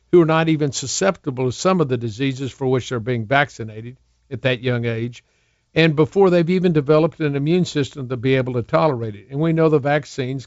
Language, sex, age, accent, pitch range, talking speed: English, male, 50-69, American, 125-150 Hz, 220 wpm